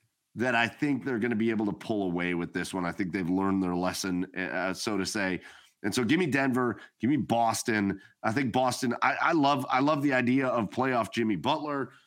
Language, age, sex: English, 30-49, male